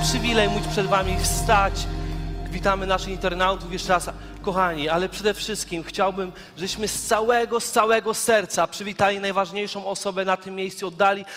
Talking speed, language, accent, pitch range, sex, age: 150 wpm, Polish, native, 190-225 Hz, male, 30-49